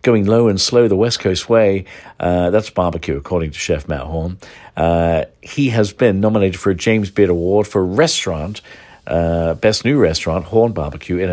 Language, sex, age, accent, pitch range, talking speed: English, male, 50-69, British, 80-105 Hz, 190 wpm